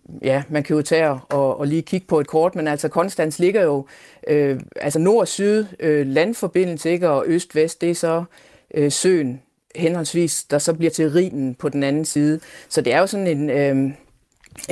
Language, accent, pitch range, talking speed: Danish, native, 145-180 Hz, 195 wpm